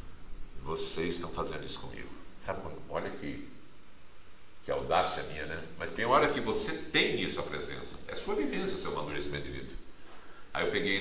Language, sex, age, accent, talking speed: Portuguese, male, 60-79, Brazilian, 170 wpm